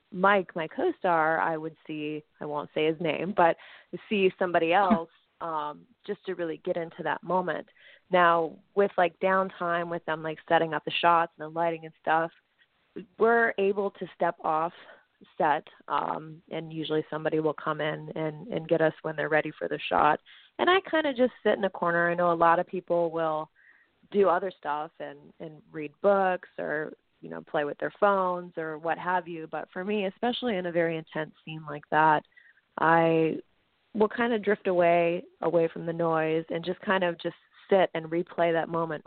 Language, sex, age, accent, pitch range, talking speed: English, female, 20-39, American, 155-190 Hz, 195 wpm